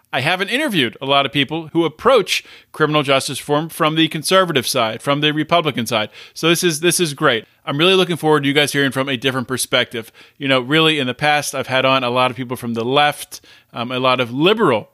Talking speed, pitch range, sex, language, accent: 235 wpm, 140-180 Hz, male, English, American